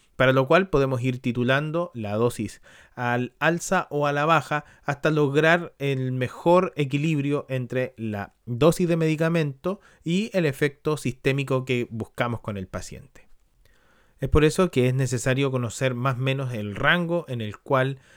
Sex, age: male, 30-49